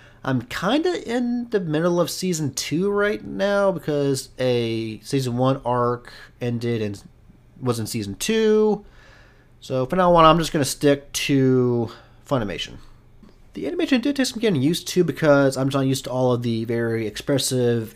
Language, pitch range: English, 120-180 Hz